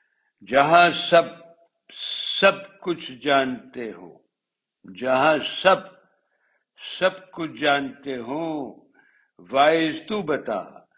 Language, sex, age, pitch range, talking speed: Urdu, male, 60-79, 130-170 Hz, 80 wpm